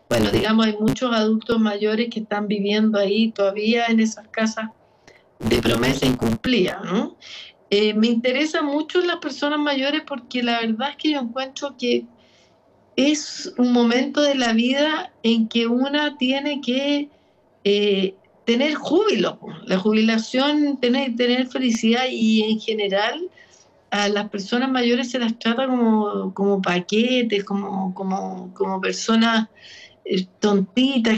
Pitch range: 200-245 Hz